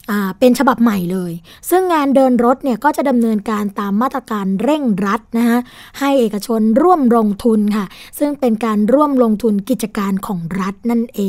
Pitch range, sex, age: 205-250 Hz, female, 20-39